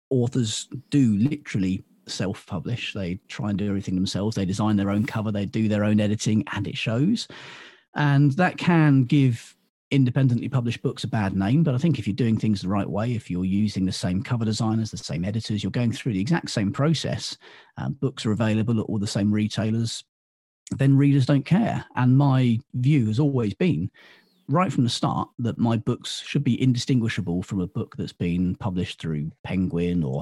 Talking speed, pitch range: 195 wpm, 100-135 Hz